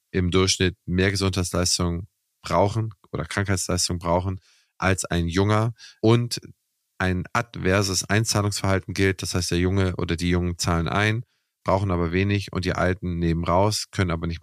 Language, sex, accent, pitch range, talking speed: German, male, German, 90-105 Hz, 150 wpm